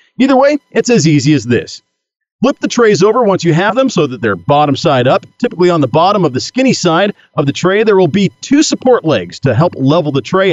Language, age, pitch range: English, 40-59, 130-195 Hz